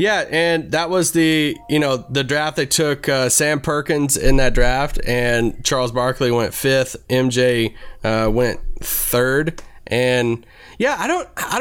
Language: English